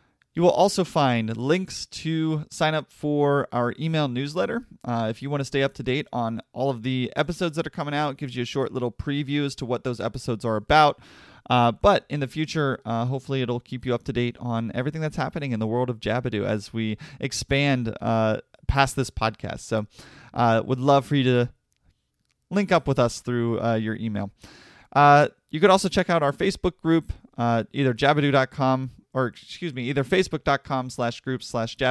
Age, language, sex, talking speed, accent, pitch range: 30-49, English, male, 205 wpm, American, 115-145 Hz